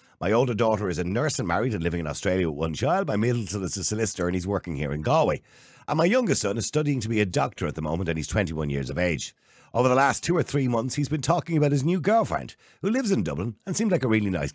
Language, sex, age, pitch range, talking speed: English, male, 50-69, 95-140 Hz, 290 wpm